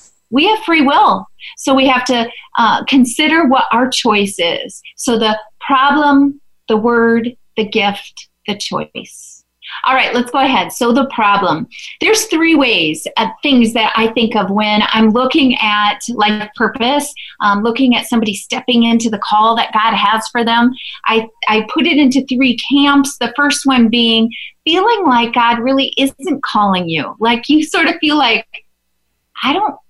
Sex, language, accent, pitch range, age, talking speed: female, English, American, 215-280 Hz, 30-49, 170 wpm